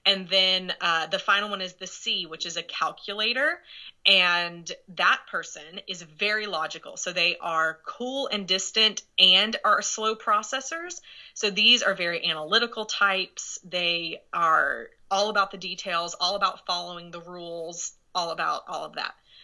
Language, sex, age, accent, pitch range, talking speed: English, female, 30-49, American, 175-210 Hz, 155 wpm